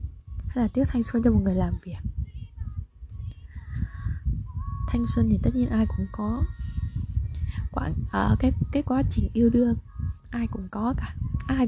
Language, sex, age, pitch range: Vietnamese, female, 10-29, 90-110 Hz